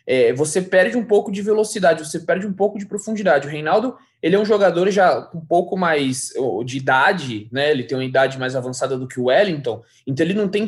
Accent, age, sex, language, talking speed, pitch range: Brazilian, 20-39, male, Portuguese, 230 wpm, 145-205 Hz